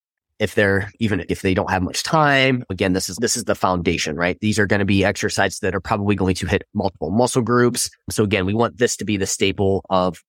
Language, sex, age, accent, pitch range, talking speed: English, male, 20-39, American, 90-115 Hz, 245 wpm